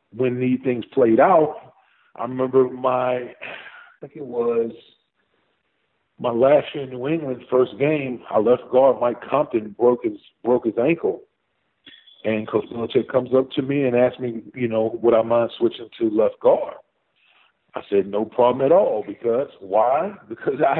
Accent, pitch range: American, 120-145 Hz